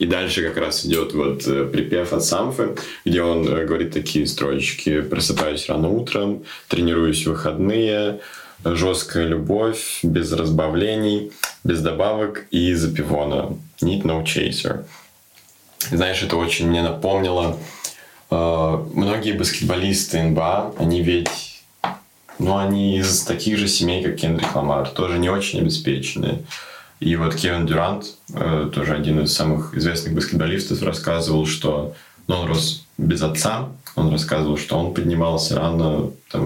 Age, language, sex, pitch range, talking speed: 20-39, Russian, male, 80-90 Hz, 135 wpm